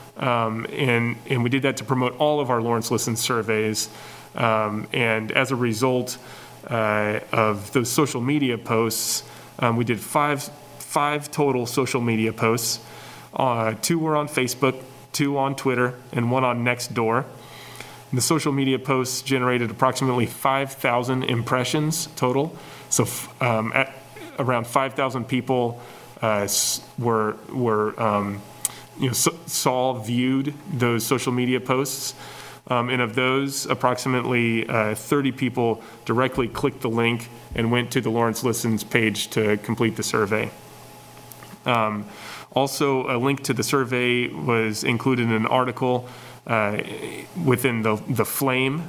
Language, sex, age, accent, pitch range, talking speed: English, male, 30-49, American, 115-135 Hz, 140 wpm